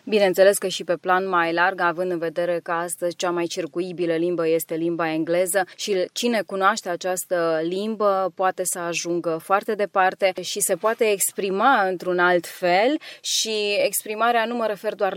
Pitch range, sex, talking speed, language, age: 175-205 Hz, female, 165 wpm, Romanian, 20-39